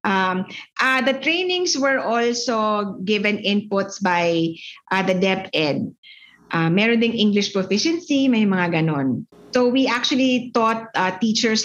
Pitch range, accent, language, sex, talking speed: 180-230 Hz, Filipino, English, female, 135 wpm